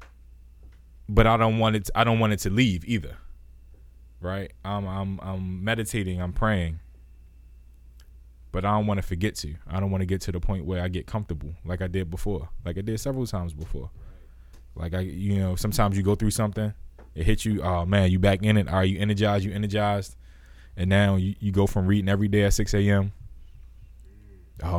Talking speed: 210 wpm